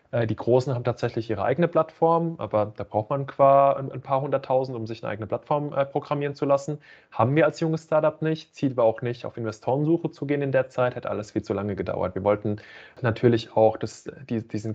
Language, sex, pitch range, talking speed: German, male, 110-140 Hz, 210 wpm